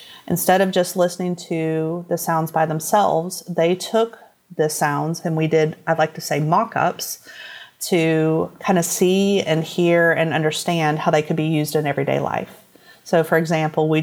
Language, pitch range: English, 155-185 Hz